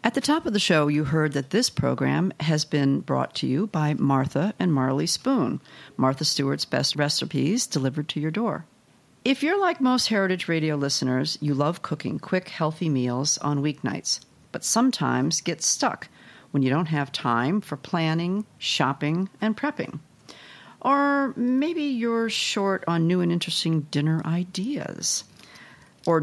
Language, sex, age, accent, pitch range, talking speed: English, female, 50-69, American, 145-200 Hz, 160 wpm